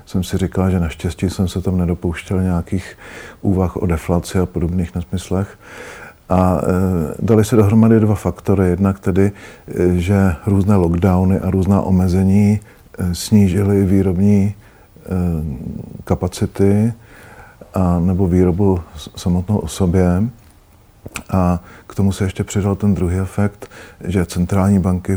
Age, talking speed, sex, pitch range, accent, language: 50-69, 120 wpm, male, 90-100 Hz, native, Czech